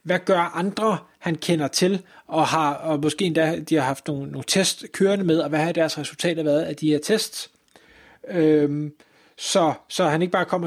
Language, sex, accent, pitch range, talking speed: Danish, male, native, 155-195 Hz, 200 wpm